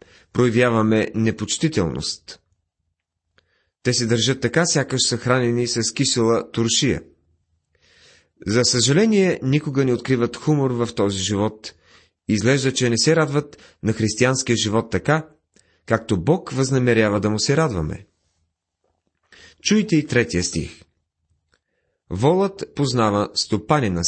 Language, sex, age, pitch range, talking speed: Bulgarian, male, 30-49, 95-135 Hz, 110 wpm